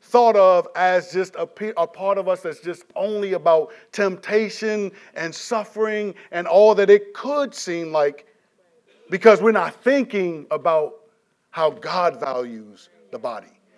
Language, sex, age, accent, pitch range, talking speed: English, male, 40-59, American, 165-220 Hz, 145 wpm